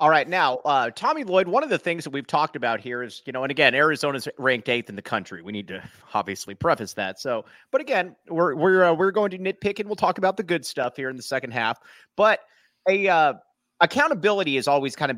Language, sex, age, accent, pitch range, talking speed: English, male, 30-49, American, 140-205 Hz, 245 wpm